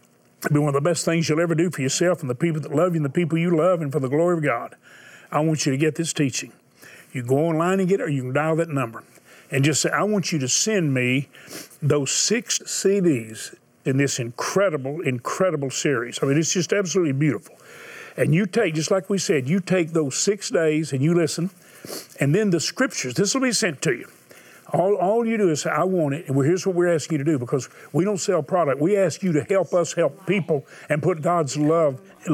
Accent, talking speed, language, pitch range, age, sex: American, 245 wpm, English, 145-185 Hz, 50-69, male